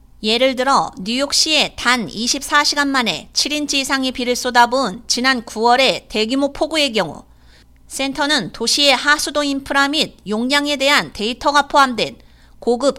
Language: Korean